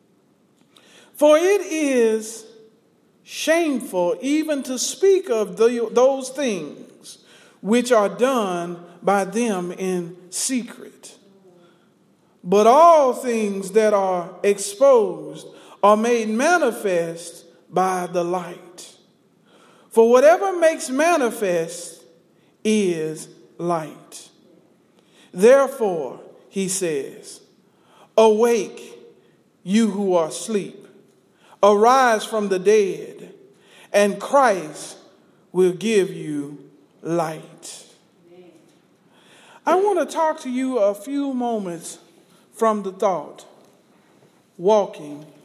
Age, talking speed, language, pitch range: 50-69, 85 wpm, English, 175-255 Hz